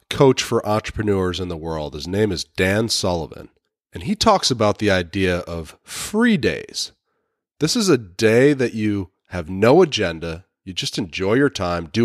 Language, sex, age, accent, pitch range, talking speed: English, male, 30-49, American, 90-120 Hz, 175 wpm